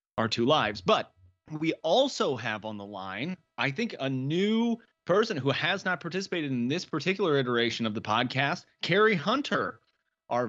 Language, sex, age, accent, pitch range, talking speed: English, male, 30-49, American, 115-165 Hz, 165 wpm